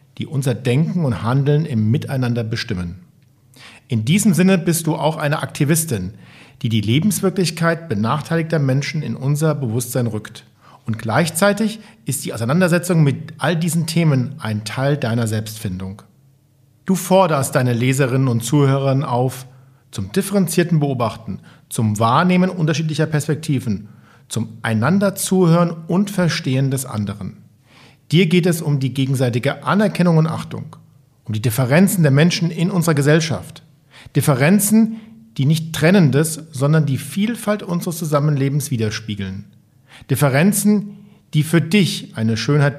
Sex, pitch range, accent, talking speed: male, 125-170 Hz, German, 130 wpm